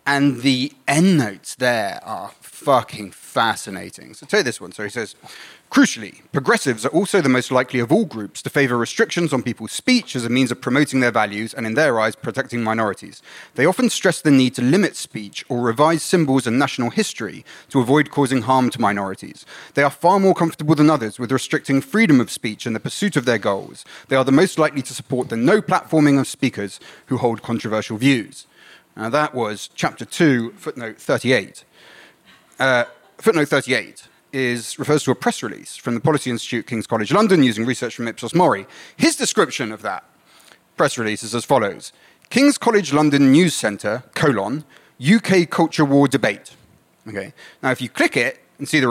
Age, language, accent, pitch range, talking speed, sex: 30-49, English, British, 120-155 Hz, 190 wpm, male